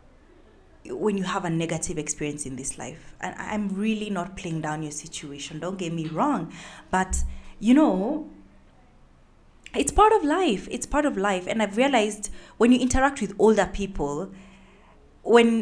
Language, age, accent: English, 20-39, South African